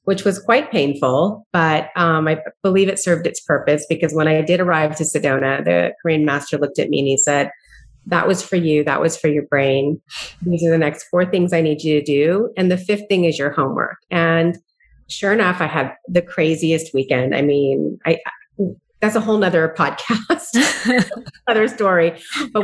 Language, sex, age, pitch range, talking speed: English, female, 30-49, 150-175 Hz, 200 wpm